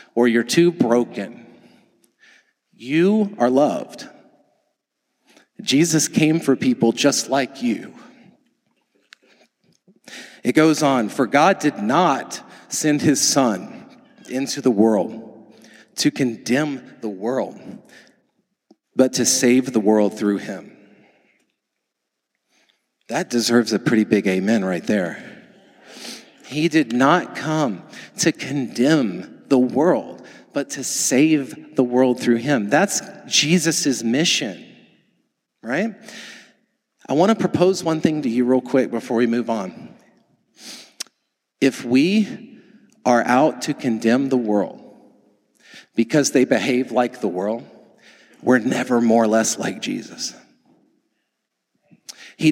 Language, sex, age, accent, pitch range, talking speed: English, male, 40-59, American, 115-155 Hz, 115 wpm